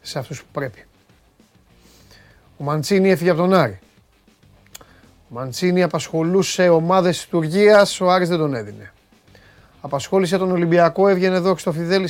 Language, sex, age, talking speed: Greek, male, 30-49, 145 wpm